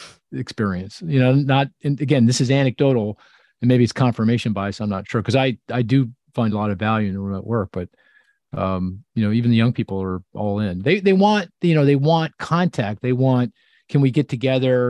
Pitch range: 105-135 Hz